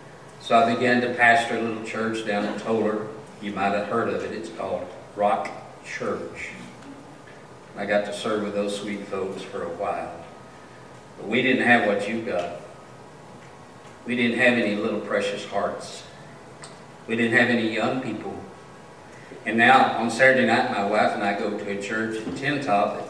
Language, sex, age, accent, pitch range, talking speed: English, male, 50-69, American, 105-125 Hz, 175 wpm